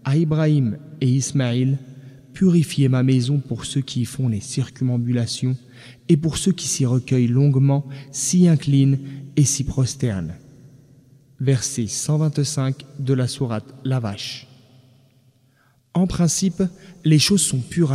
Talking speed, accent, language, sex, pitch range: 135 wpm, French, French, male, 130-155 Hz